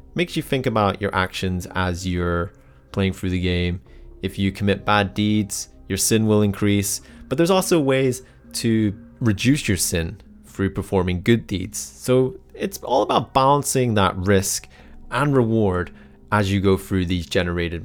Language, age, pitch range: English, 30-49, 90-105 Hz